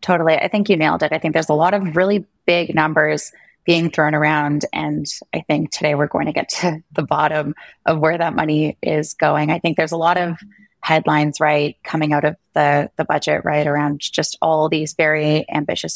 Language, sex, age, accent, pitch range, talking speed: English, female, 20-39, American, 150-175 Hz, 210 wpm